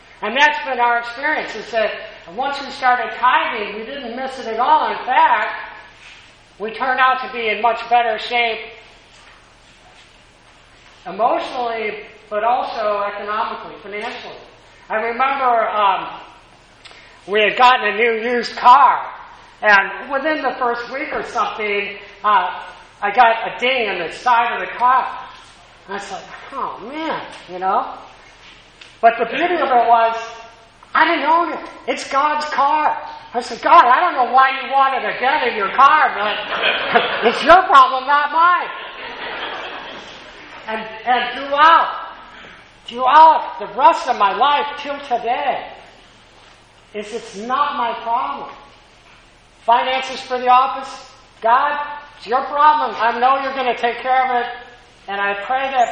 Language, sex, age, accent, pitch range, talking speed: English, male, 40-59, American, 230-285 Hz, 150 wpm